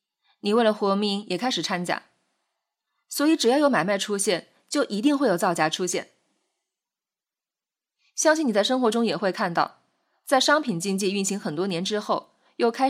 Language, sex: Chinese, female